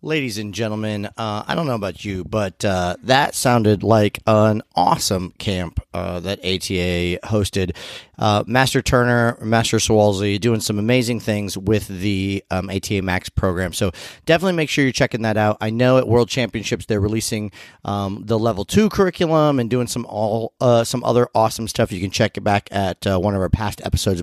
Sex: male